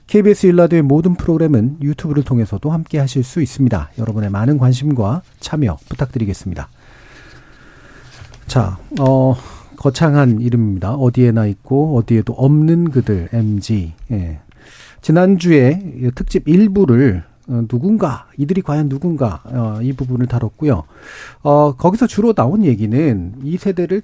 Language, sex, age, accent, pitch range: Korean, male, 40-59, native, 115-170 Hz